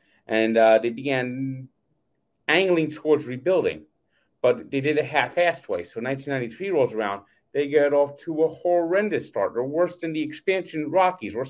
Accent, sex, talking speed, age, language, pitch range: American, male, 160 wpm, 30-49, English, 125-165 Hz